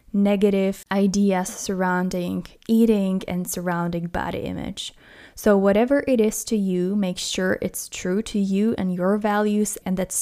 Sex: female